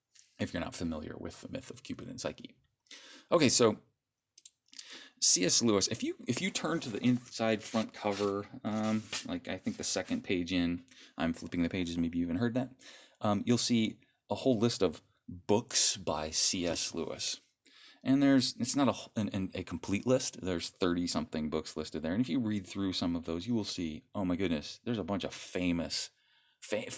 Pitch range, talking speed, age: 85-115 Hz, 200 wpm, 30-49